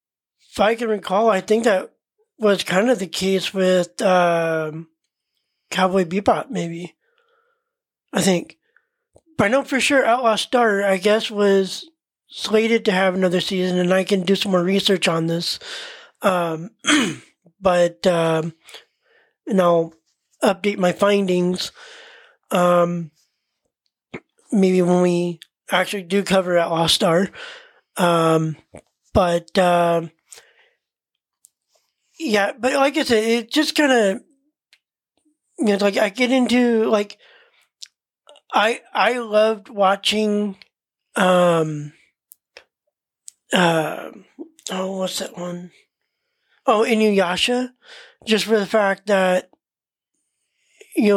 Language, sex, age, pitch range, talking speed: English, male, 20-39, 180-235 Hz, 115 wpm